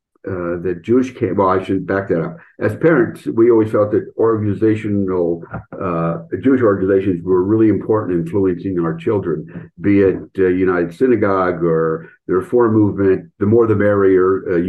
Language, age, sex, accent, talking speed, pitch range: English, 50-69, male, American, 170 wpm, 85-105 Hz